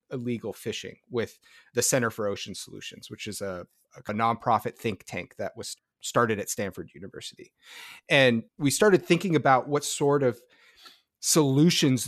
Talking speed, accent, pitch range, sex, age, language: 150 wpm, American, 110-130 Hz, male, 30-49, English